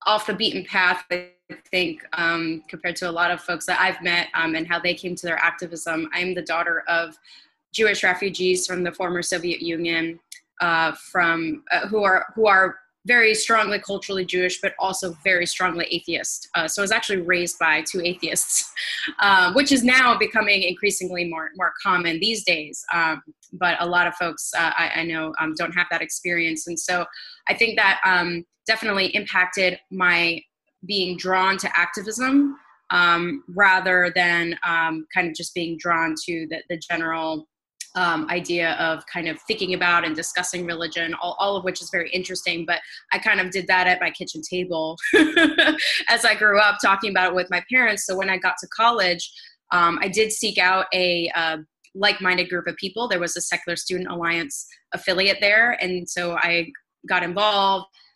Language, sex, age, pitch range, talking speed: English, female, 20-39, 170-195 Hz, 185 wpm